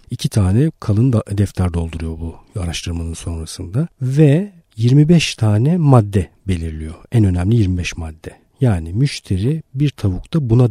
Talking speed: 125 wpm